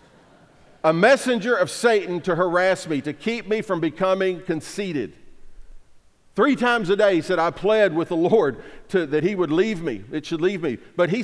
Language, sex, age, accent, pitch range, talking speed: English, male, 50-69, American, 155-205 Hz, 185 wpm